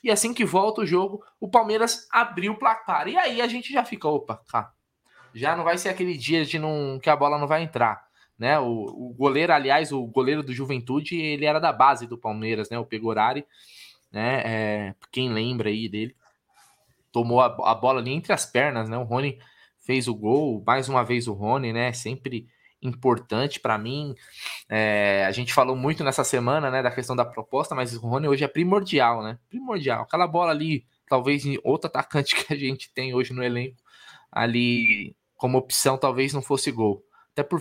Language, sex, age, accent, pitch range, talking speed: Portuguese, male, 20-39, Brazilian, 120-180 Hz, 195 wpm